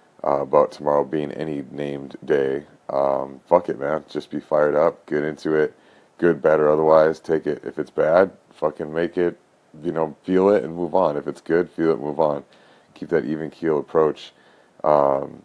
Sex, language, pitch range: male, English, 75-85 Hz